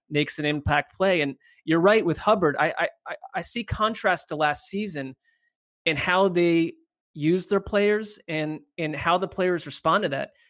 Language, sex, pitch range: English, male, 150-185 Hz